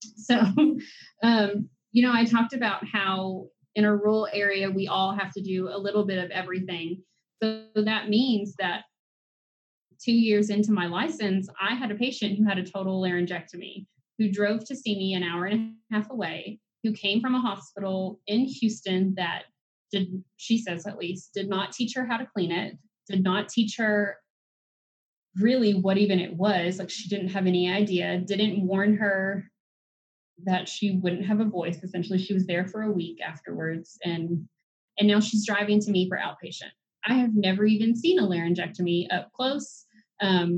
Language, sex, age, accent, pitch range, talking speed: English, female, 20-39, American, 185-220 Hz, 180 wpm